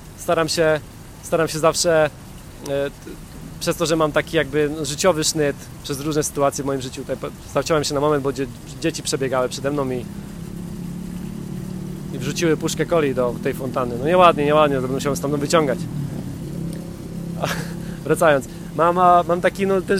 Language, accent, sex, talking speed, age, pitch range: Polish, native, male, 165 wpm, 20-39, 140-170 Hz